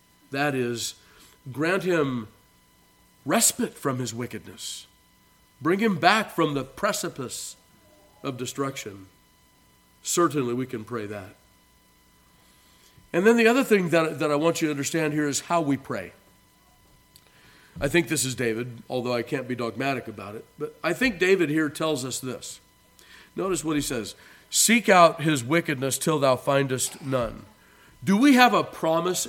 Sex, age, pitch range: male, 50-69, 120-155 Hz